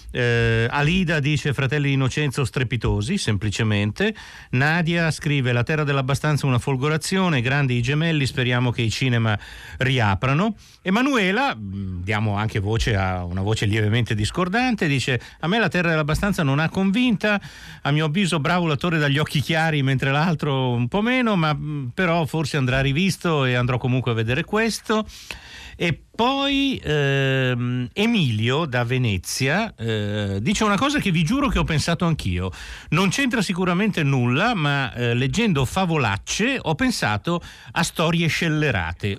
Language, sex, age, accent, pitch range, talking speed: Italian, male, 50-69, native, 115-170 Hz, 145 wpm